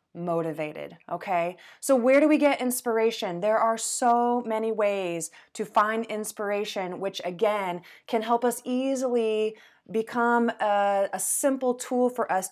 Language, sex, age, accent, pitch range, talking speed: English, female, 20-39, American, 180-230 Hz, 140 wpm